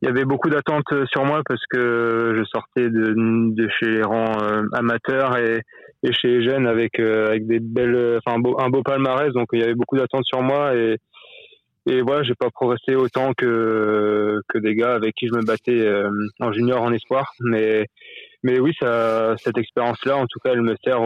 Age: 20-39